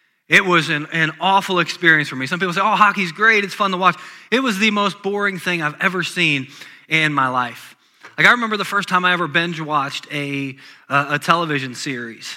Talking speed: 220 wpm